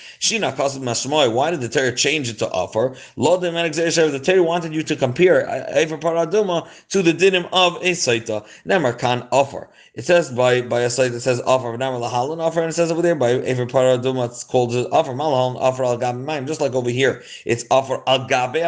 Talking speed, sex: 195 wpm, male